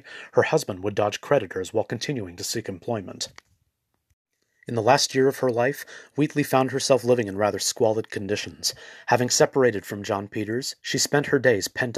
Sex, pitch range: male, 105-130 Hz